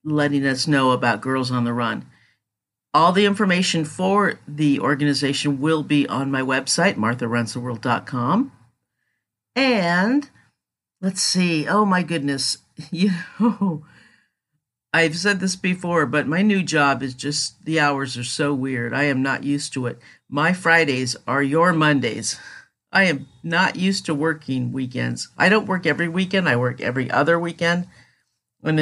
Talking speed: 150 wpm